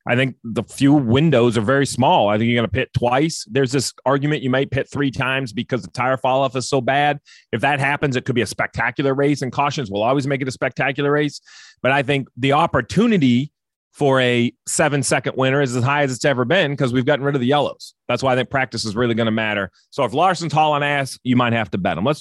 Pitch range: 120-150 Hz